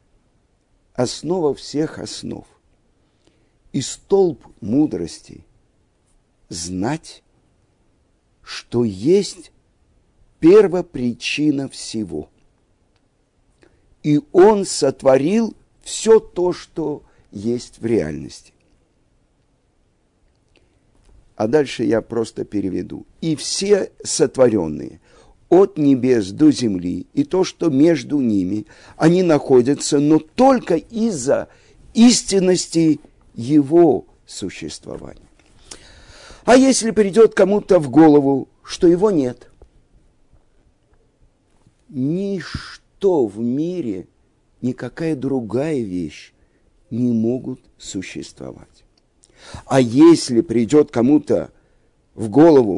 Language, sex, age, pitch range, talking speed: Russian, male, 50-69, 115-185 Hz, 80 wpm